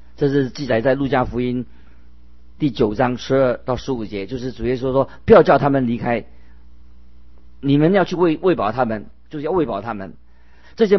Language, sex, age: Chinese, male, 50-69